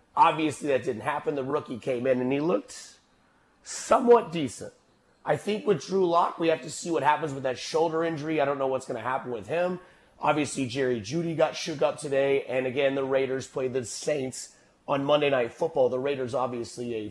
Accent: American